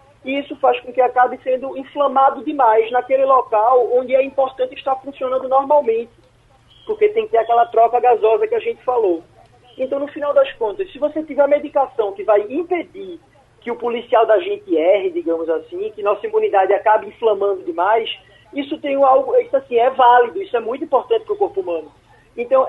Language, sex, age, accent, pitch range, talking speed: Portuguese, male, 20-39, Brazilian, 220-300 Hz, 190 wpm